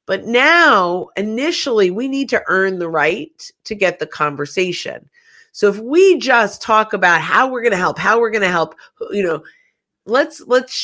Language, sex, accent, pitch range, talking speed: English, female, American, 175-235 Hz, 185 wpm